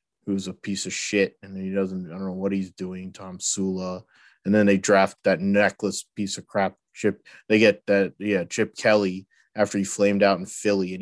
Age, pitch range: 20-39, 95-100 Hz